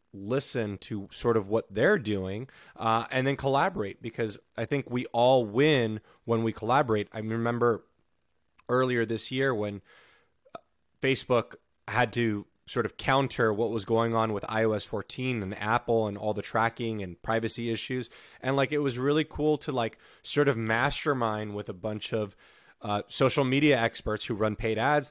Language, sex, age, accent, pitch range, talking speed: English, male, 20-39, American, 105-125 Hz, 170 wpm